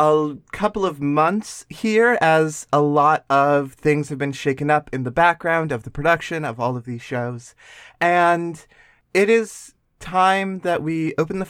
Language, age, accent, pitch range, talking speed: English, 20-39, American, 150-195 Hz, 170 wpm